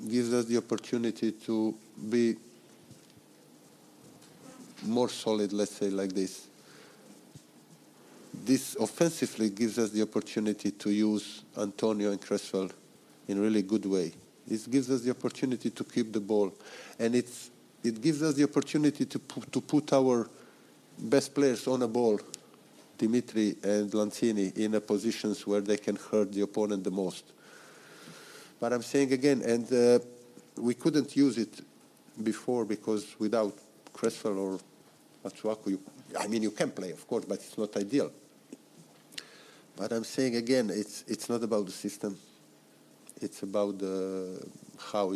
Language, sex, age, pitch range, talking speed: English, male, 50-69, 100-120 Hz, 145 wpm